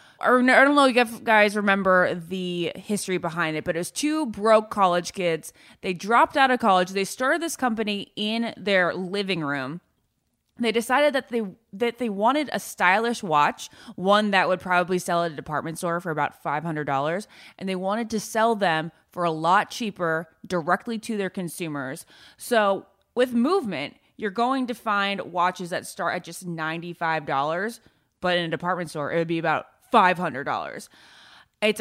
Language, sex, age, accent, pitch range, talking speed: English, female, 20-39, American, 170-220 Hz, 170 wpm